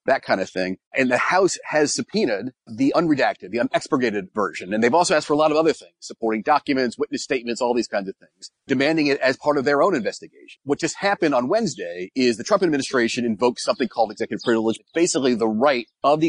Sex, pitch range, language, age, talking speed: male, 120-175 Hz, English, 30-49, 220 wpm